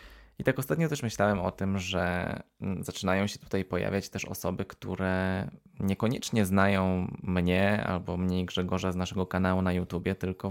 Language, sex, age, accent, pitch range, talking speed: Polish, male, 20-39, native, 90-100 Hz, 155 wpm